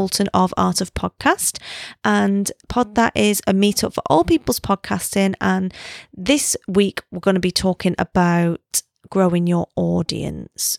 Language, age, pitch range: English, 20-39, 190-245 Hz